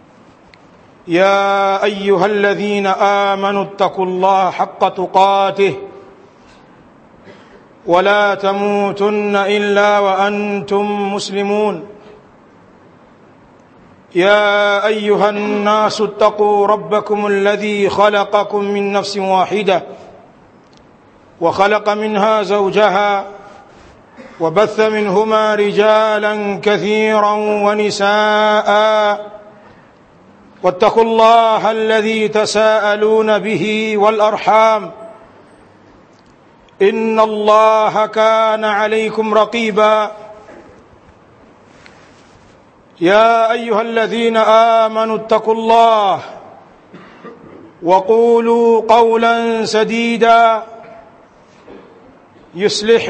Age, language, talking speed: 50-69, Swahili, 60 wpm